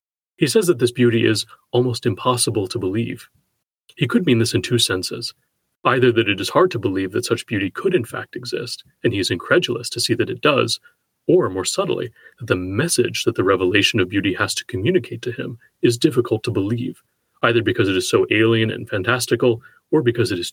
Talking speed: 210 wpm